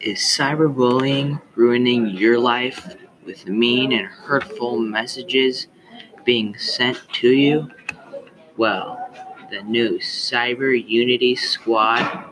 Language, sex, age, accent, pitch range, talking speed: English, male, 30-49, American, 115-145 Hz, 95 wpm